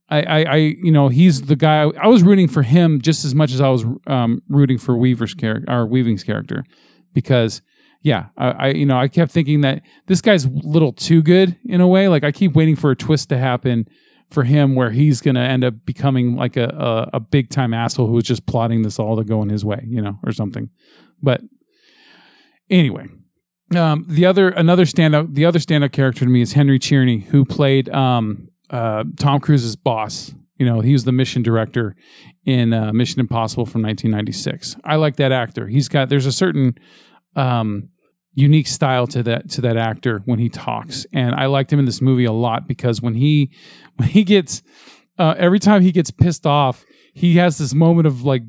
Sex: male